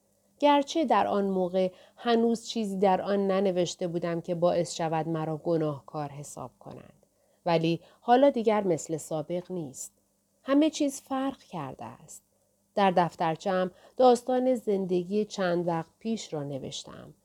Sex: female